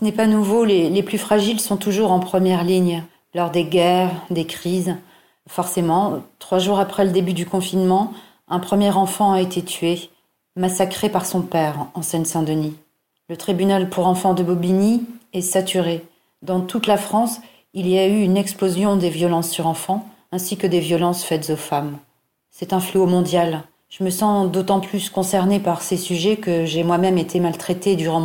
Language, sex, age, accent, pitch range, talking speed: French, female, 40-59, French, 180-200 Hz, 185 wpm